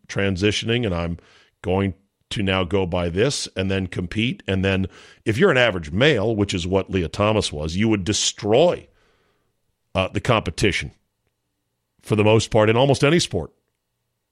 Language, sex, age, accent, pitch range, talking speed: English, male, 50-69, American, 95-125 Hz, 165 wpm